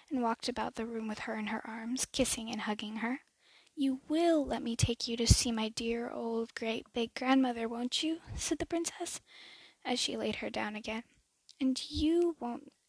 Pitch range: 235-285 Hz